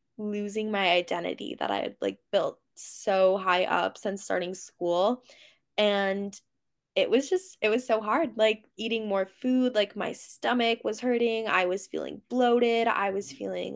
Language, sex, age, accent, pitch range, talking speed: English, female, 20-39, American, 190-225 Hz, 165 wpm